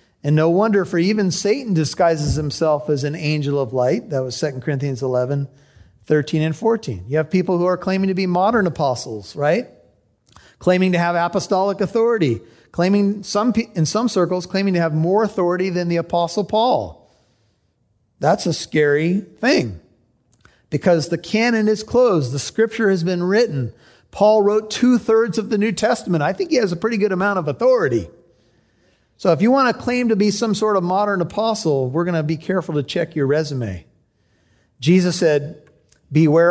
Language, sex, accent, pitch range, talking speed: English, male, American, 145-190 Hz, 180 wpm